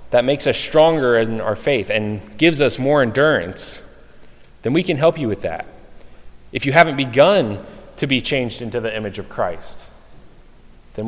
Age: 30-49